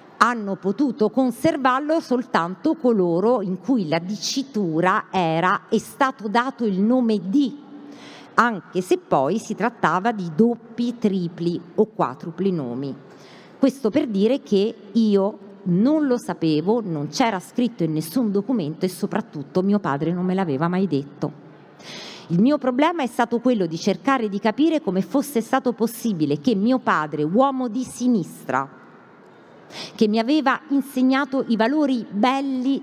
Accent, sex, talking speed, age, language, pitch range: native, female, 140 wpm, 50-69, Italian, 175-250 Hz